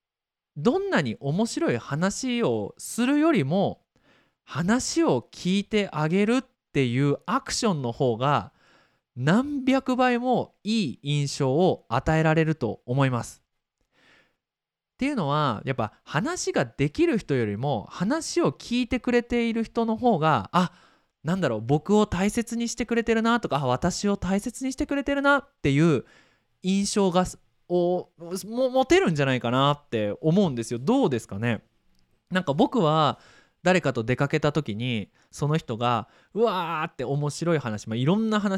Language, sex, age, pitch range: Japanese, male, 20-39, 140-230 Hz